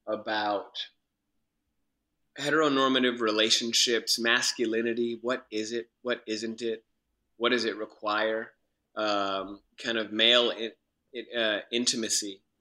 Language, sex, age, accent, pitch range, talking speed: English, male, 30-49, American, 95-110 Hz, 95 wpm